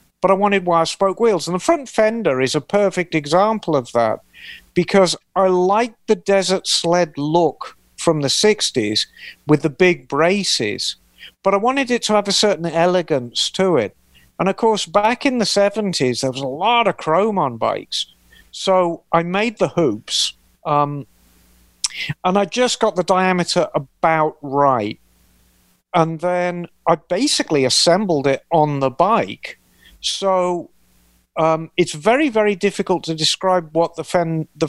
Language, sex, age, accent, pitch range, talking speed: English, male, 50-69, British, 135-190 Hz, 155 wpm